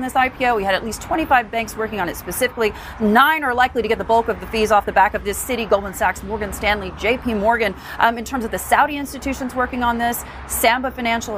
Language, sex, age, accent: English, female, 40-59, American